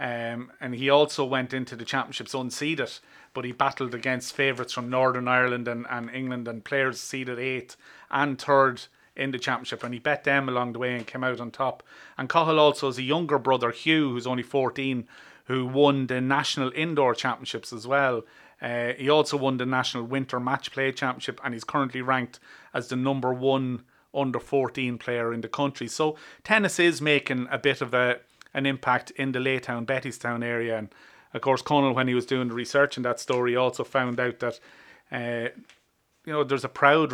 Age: 30-49